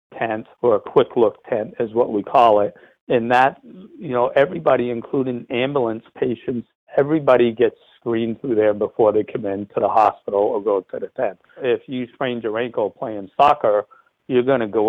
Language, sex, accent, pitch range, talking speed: English, male, American, 105-125 Hz, 190 wpm